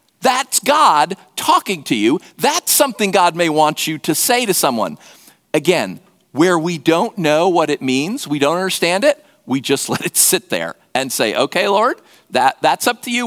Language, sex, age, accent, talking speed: English, male, 50-69, American, 185 wpm